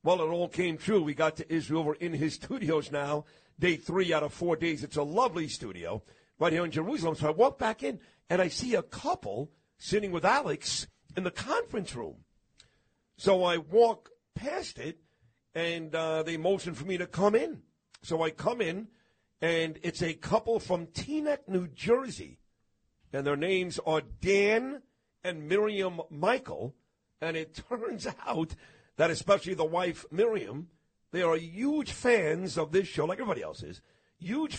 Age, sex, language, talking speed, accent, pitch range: 50-69, male, English, 175 wpm, American, 155-190 Hz